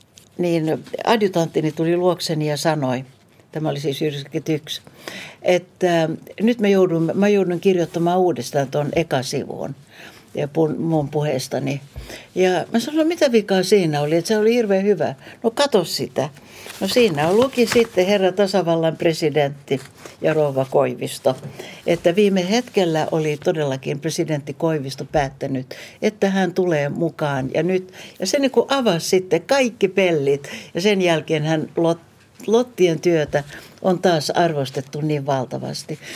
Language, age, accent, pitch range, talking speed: Finnish, 60-79, native, 150-195 Hz, 135 wpm